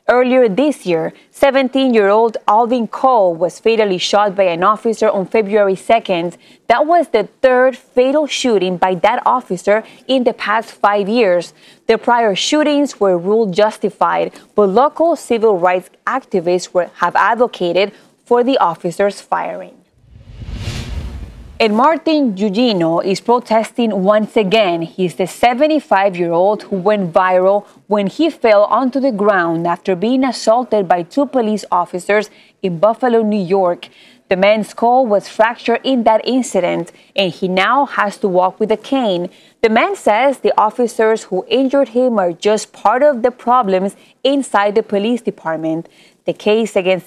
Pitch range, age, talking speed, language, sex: 190-245 Hz, 20-39, 145 wpm, English, female